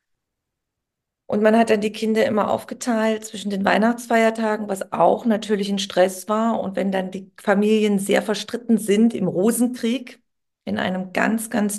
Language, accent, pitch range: German, German, 195-225 Hz